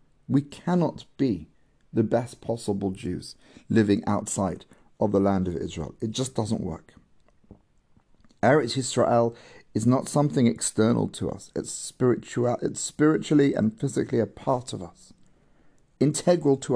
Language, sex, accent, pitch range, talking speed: English, male, British, 115-150 Hz, 135 wpm